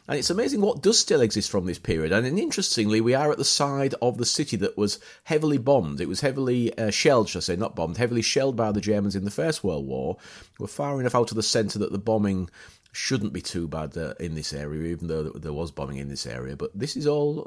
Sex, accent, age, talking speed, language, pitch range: male, British, 30-49, 260 wpm, English, 90-130 Hz